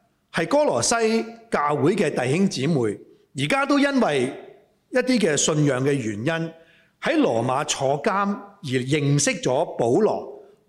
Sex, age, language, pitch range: male, 30-49, Chinese, 140-230 Hz